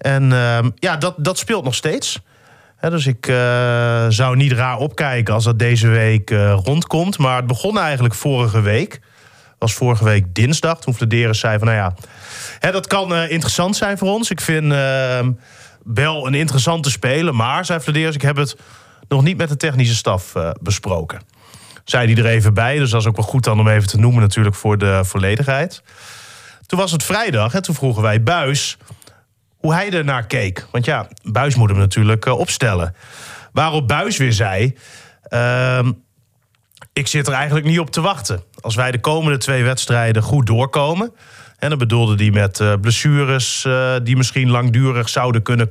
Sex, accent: male, Dutch